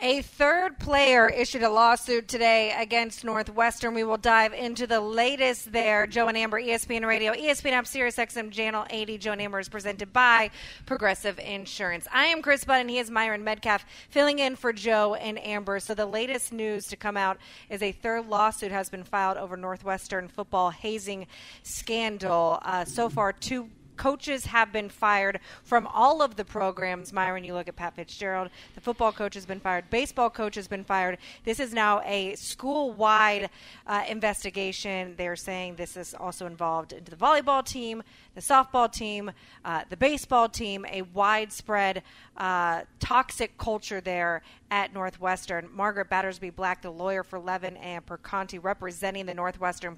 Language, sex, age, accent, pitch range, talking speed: English, female, 30-49, American, 190-230 Hz, 170 wpm